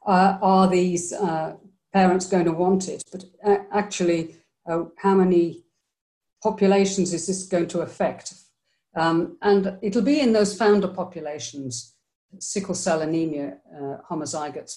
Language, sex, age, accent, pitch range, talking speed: English, female, 50-69, British, 155-200 Hz, 140 wpm